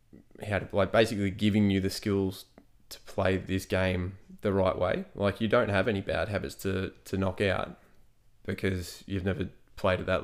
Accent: Australian